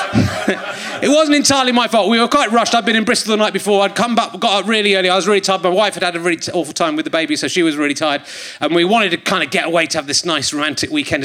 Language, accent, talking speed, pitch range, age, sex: English, British, 310 wpm, 155-215 Hz, 30-49, male